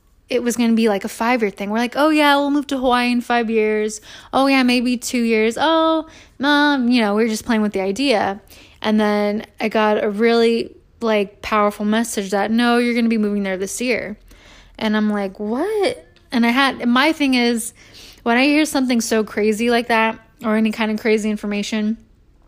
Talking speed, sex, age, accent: 210 wpm, female, 20-39, American